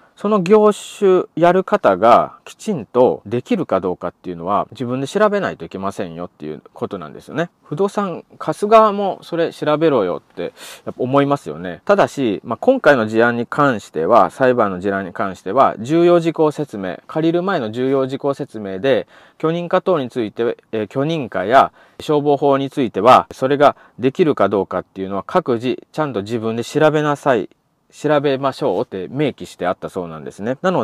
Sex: male